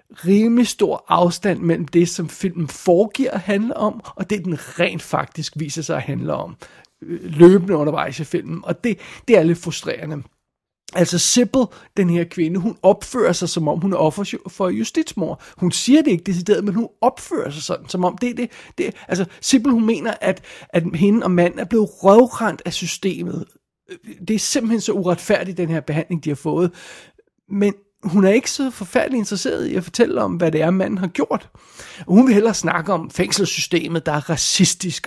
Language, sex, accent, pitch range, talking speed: Danish, male, native, 165-200 Hz, 195 wpm